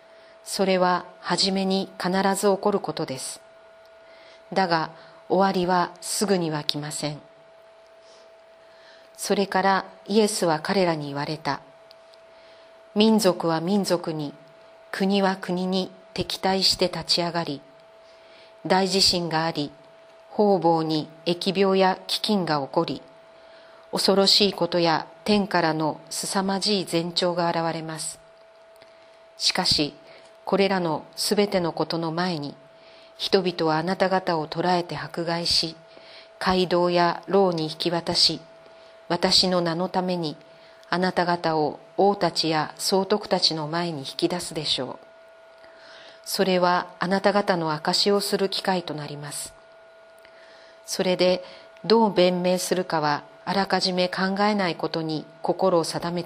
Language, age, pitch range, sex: Japanese, 40-59, 155-195 Hz, female